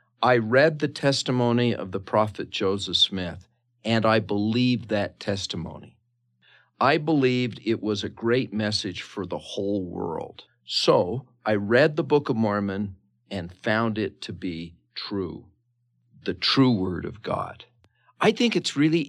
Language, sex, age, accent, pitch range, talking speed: English, male, 50-69, American, 95-125 Hz, 150 wpm